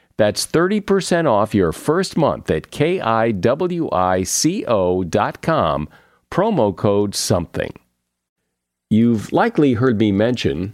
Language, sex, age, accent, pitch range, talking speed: English, male, 50-69, American, 95-140 Hz, 90 wpm